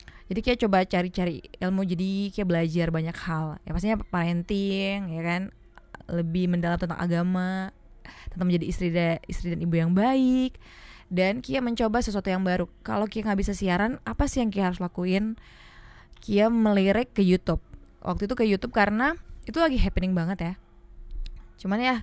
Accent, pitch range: native, 180-215 Hz